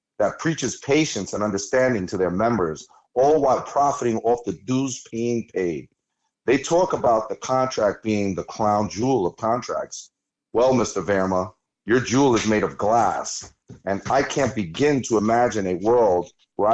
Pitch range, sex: 105-135 Hz, male